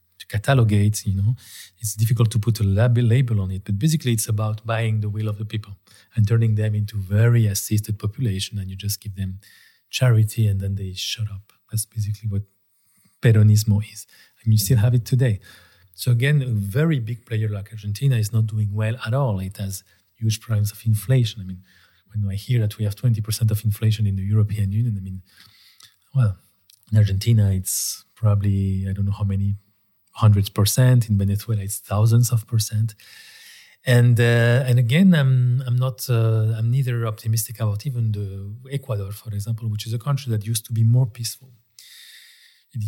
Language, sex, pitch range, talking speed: Hungarian, male, 100-120 Hz, 185 wpm